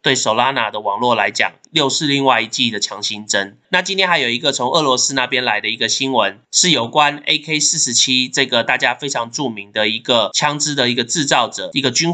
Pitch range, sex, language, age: 115-140 Hz, male, Chinese, 20-39